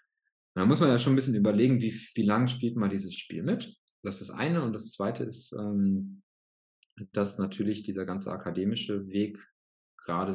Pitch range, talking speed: 90-110 Hz, 180 wpm